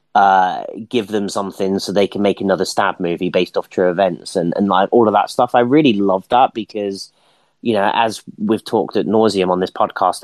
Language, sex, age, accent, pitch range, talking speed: English, male, 30-49, British, 95-110 Hz, 215 wpm